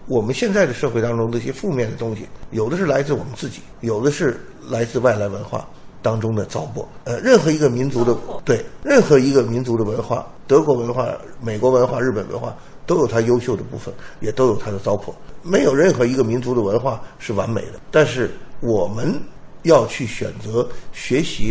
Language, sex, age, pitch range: Chinese, male, 50-69, 110-165 Hz